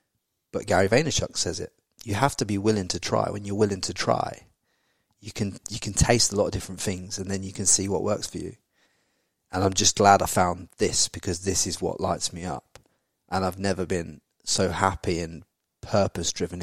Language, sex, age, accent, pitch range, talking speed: English, male, 30-49, British, 95-105 Hz, 215 wpm